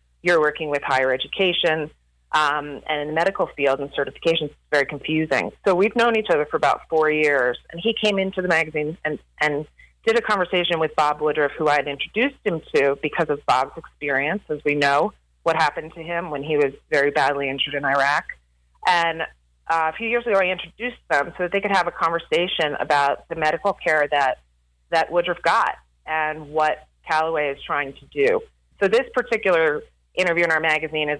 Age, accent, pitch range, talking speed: 30-49, American, 145-175 Hz, 200 wpm